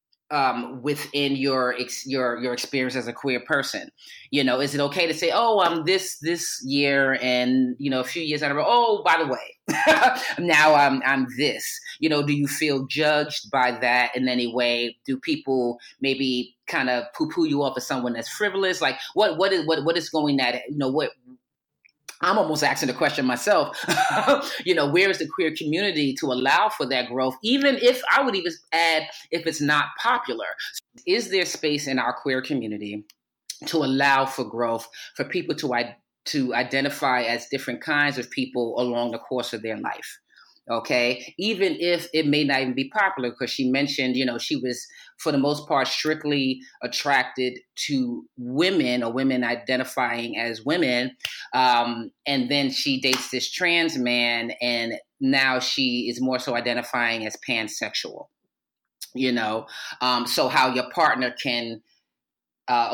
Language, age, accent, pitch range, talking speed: English, 30-49, American, 125-155 Hz, 175 wpm